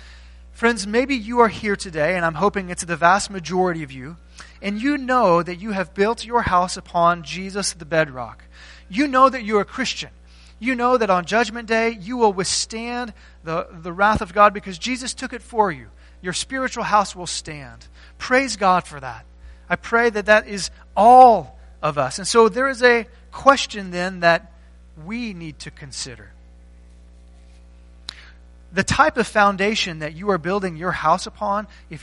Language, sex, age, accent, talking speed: English, male, 30-49, American, 180 wpm